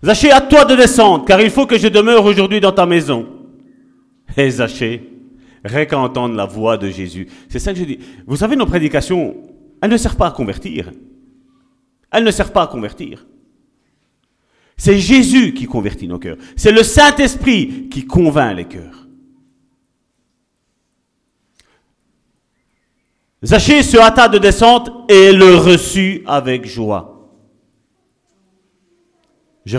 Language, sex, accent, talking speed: French, male, French, 135 wpm